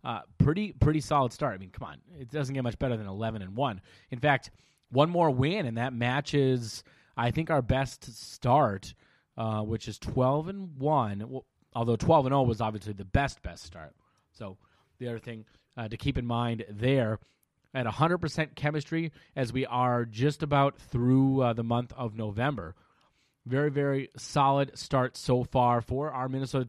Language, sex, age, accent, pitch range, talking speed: English, male, 30-49, American, 120-150 Hz, 180 wpm